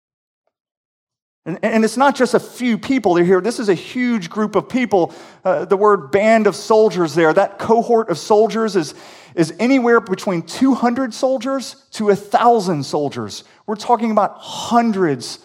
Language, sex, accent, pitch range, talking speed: English, male, American, 135-190 Hz, 160 wpm